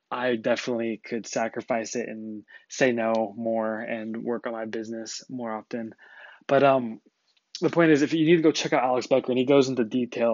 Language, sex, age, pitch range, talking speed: English, male, 20-39, 115-135 Hz, 205 wpm